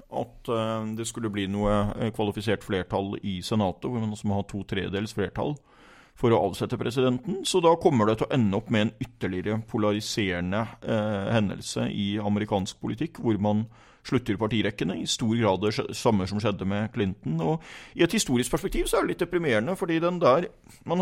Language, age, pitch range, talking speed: English, 30-49, 100-125 Hz, 175 wpm